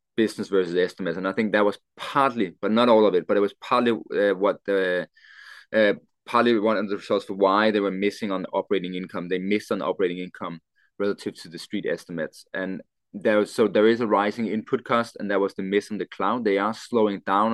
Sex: male